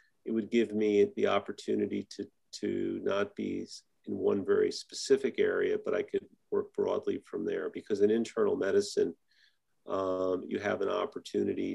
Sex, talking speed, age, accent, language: male, 160 wpm, 40-59, American, English